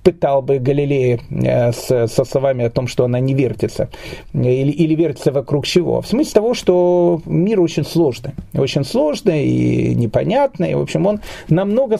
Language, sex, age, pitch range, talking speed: Russian, male, 40-59, 135-185 Hz, 160 wpm